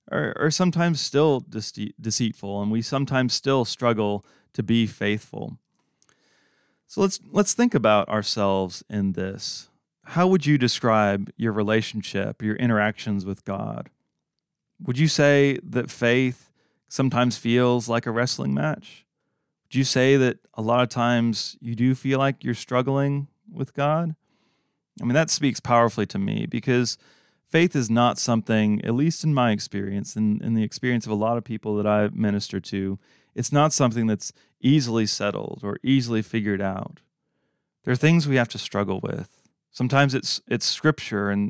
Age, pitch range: 30-49, 110-140 Hz